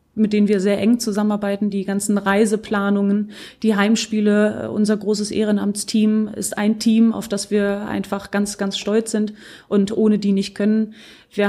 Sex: female